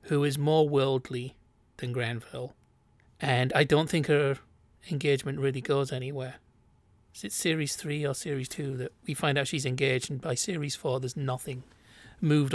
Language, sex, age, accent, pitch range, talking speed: English, male, 40-59, British, 125-160 Hz, 165 wpm